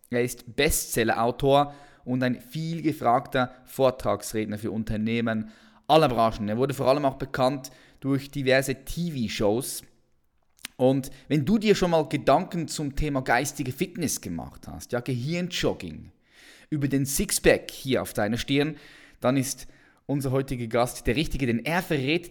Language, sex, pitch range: German, male, 120-150 Hz